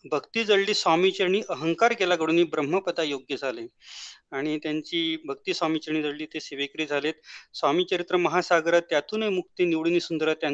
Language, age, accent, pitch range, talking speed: Marathi, 30-49, native, 155-185 Hz, 115 wpm